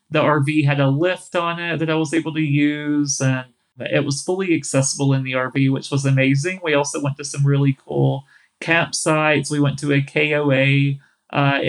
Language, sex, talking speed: English, male, 195 wpm